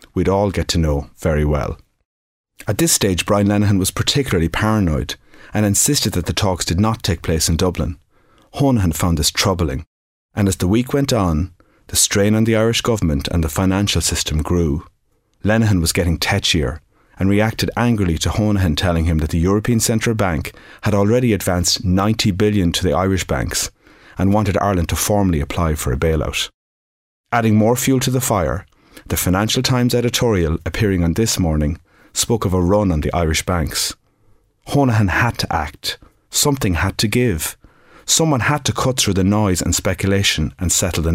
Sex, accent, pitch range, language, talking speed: male, Irish, 85-110 Hz, English, 180 wpm